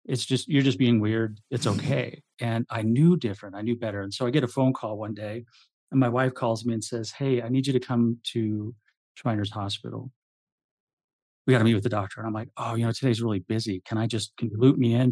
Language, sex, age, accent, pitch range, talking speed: English, male, 40-59, American, 105-125 Hz, 255 wpm